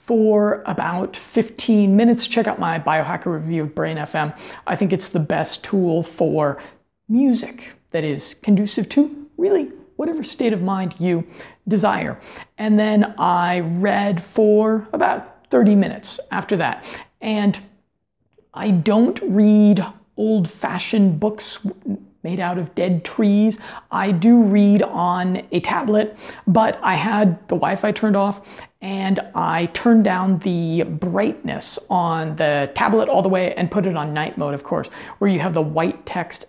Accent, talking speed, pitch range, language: American, 150 wpm, 175-215 Hz, English